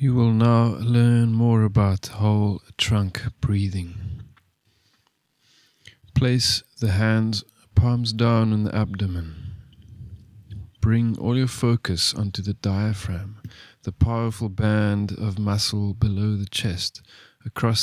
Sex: male